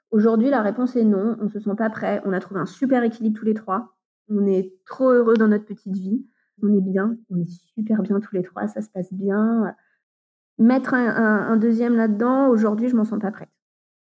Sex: female